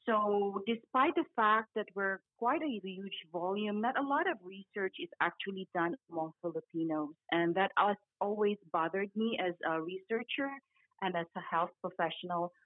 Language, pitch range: English, 175-230 Hz